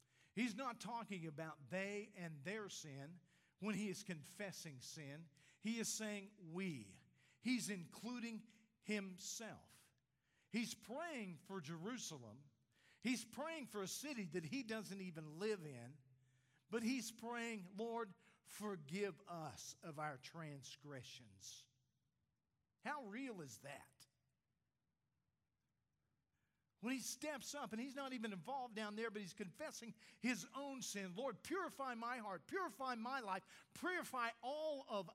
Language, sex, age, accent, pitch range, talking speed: English, male, 50-69, American, 155-230 Hz, 130 wpm